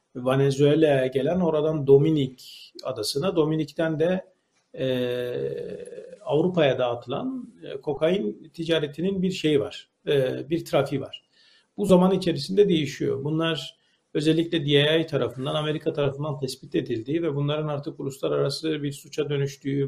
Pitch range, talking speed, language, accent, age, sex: 140-180 Hz, 120 wpm, Turkish, native, 50-69, male